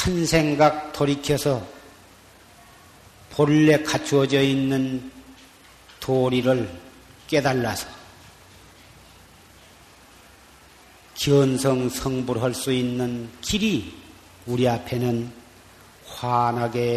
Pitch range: 115-170 Hz